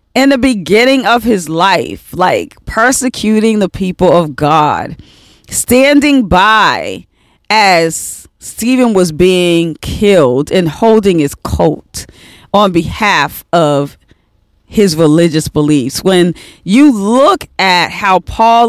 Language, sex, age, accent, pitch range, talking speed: English, female, 40-59, American, 165-235 Hz, 110 wpm